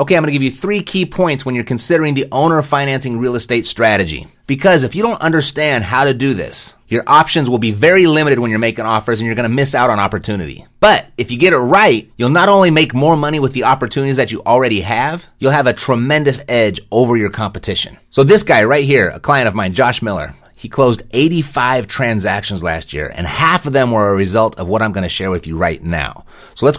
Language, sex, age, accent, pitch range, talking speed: English, male, 30-49, American, 105-140 Hz, 240 wpm